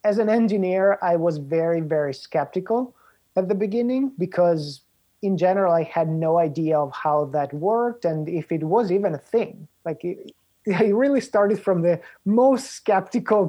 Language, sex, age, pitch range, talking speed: English, male, 30-49, 155-195 Hz, 165 wpm